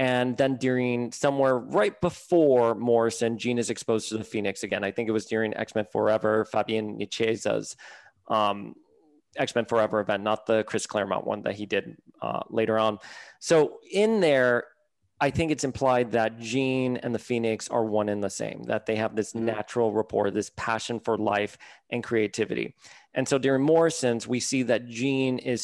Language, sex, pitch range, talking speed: English, male, 110-135 Hz, 180 wpm